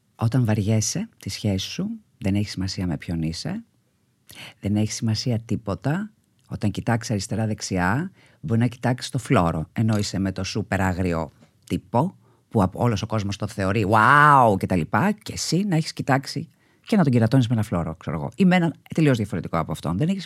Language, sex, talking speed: Greek, female, 180 wpm